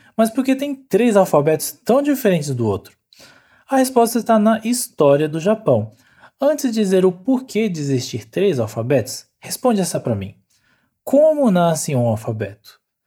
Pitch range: 135-225 Hz